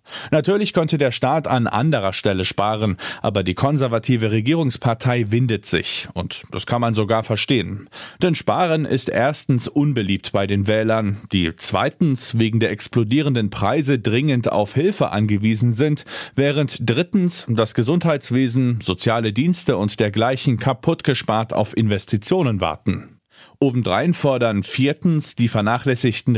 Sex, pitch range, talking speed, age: male, 105-140 Hz, 125 wpm, 40-59